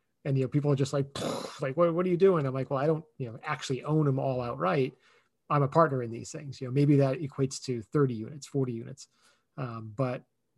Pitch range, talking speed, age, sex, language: 130-150 Hz, 245 wpm, 30-49, male, English